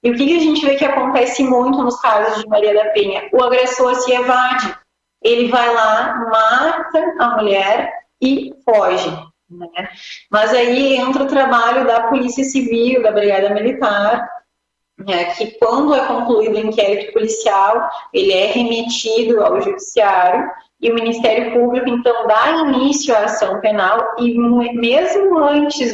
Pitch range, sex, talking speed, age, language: 215-265 Hz, female, 150 wpm, 30-49, Portuguese